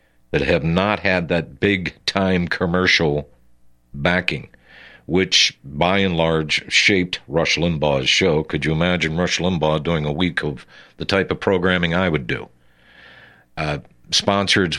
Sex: male